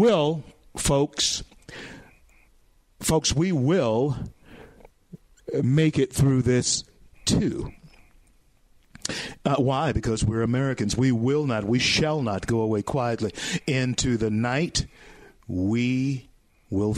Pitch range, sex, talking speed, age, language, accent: 110-140 Hz, male, 100 wpm, 50-69, English, American